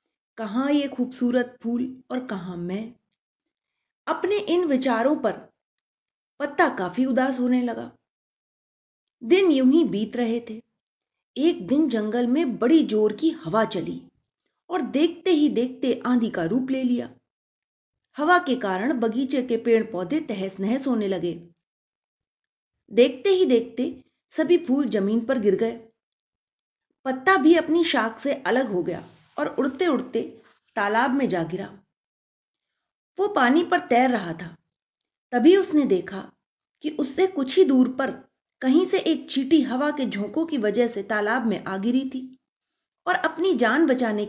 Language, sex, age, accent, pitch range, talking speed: Hindi, female, 30-49, native, 225-310 Hz, 150 wpm